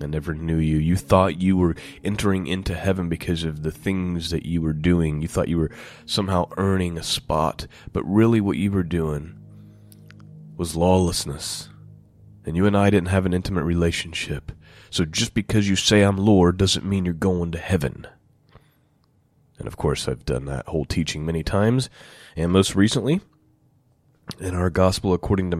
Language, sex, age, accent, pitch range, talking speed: English, male, 30-49, American, 85-105 Hz, 175 wpm